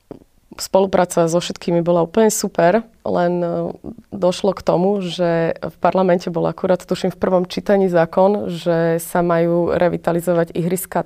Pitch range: 170-185 Hz